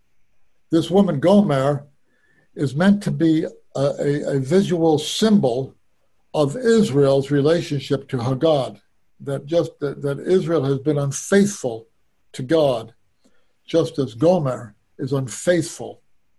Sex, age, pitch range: male, 60-79, 135-165 Hz